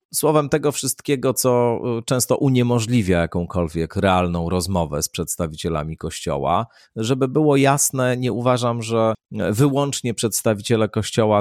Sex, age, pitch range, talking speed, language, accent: male, 40-59, 95-120 Hz, 110 wpm, Polish, native